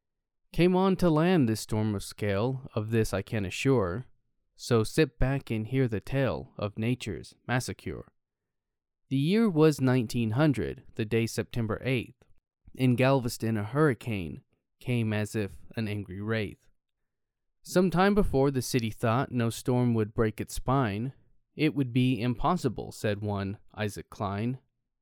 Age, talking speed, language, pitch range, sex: 20-39, 145 wpm, English, 105-130 Hz, male